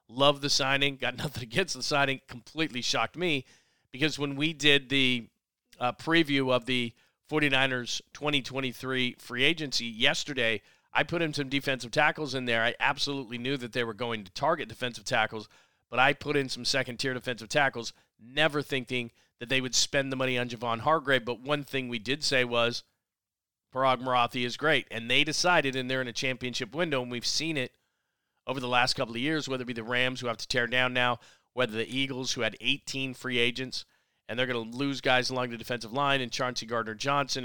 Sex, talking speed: male, 200 wpm